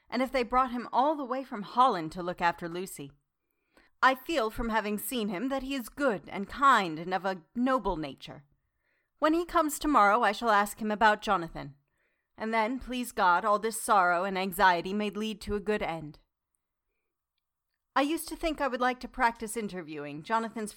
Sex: female